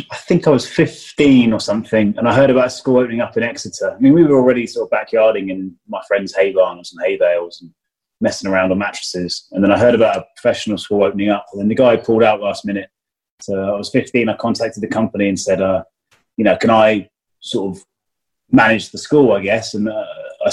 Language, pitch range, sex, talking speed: English, 95-115 Hz, male, 235 wpm